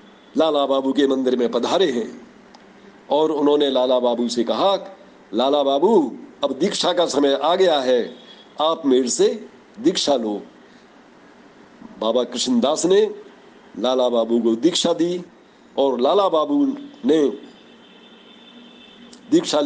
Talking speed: 120 wpm